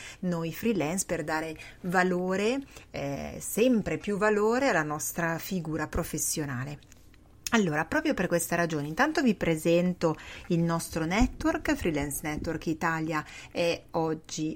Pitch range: 155-185 Hz